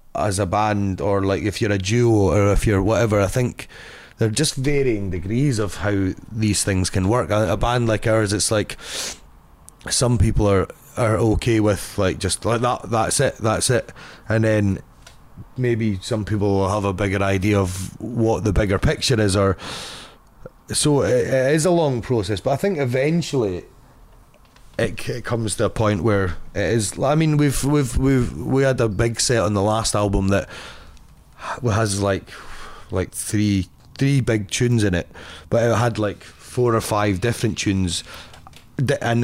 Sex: male